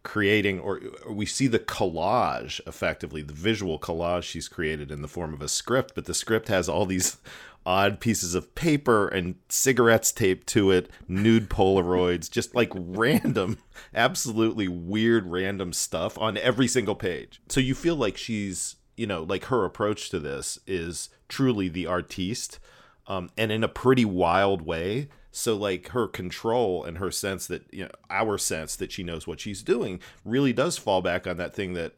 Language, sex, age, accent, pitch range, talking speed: English, male, 40-59, American, 90-110 Hz, 180 wpm